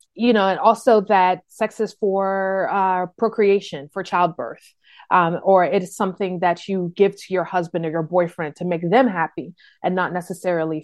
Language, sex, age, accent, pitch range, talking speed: English, female, 30-49, American, 175-210 Hz, 185 wpm